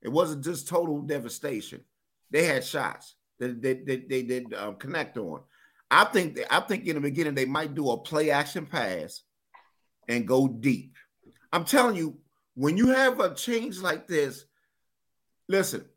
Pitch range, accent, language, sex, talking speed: 160-230 Hz, American, English, male, 175 wpm